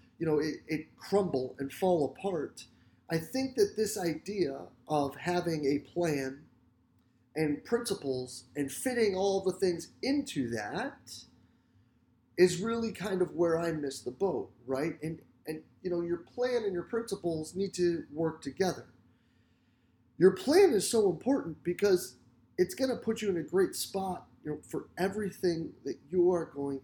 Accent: American